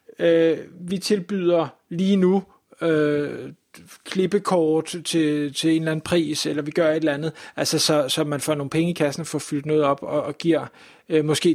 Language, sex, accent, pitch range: Danish, male, native, 150-175 Hz